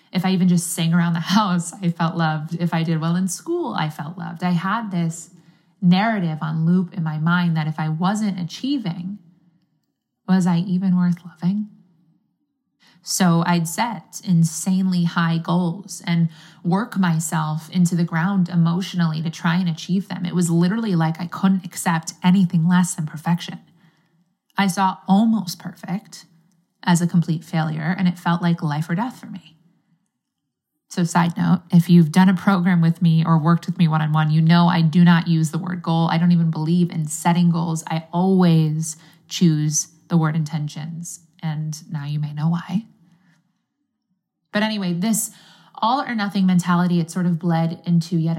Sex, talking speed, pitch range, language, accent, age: female, 170 wpm, 165-185 Hz, English, American, 20-39